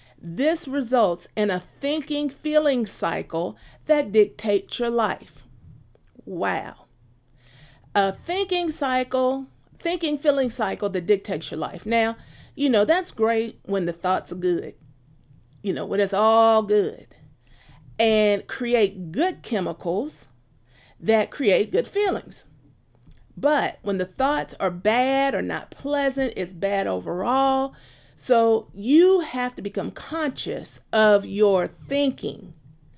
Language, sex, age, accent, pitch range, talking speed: English, female, 40-59, American, 180-265 Hz, 120 wpm